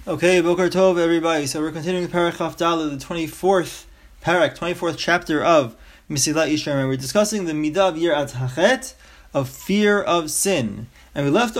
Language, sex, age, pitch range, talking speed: English, male, 30-49, 155-215 Hz, 155 wpm